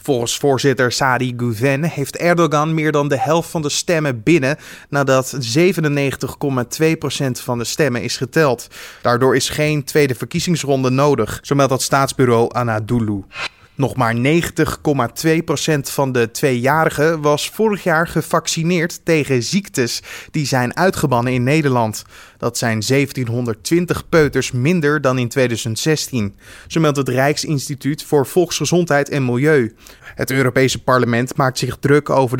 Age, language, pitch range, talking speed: 20-39, Dutch, 130-160 Hz, 135 wpm